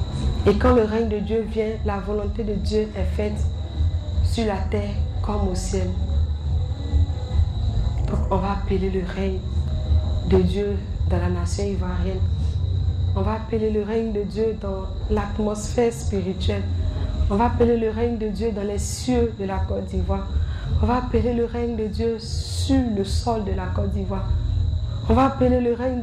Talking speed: 170 wpm